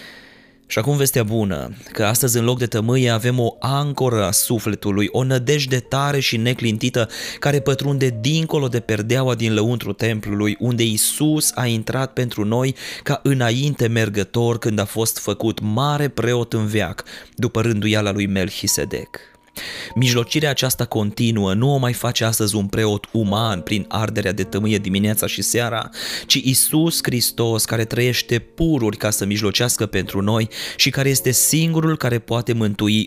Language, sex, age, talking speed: Romanian, male, 20-39, 155 wpm